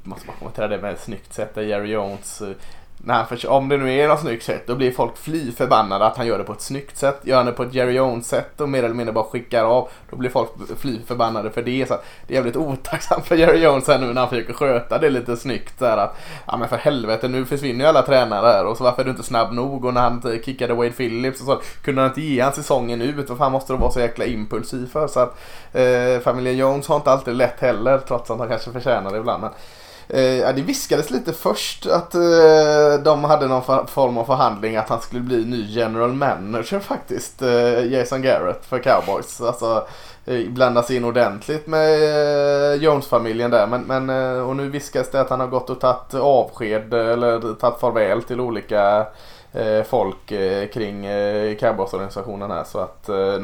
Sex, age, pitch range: male, 20-39, 115-135 Hz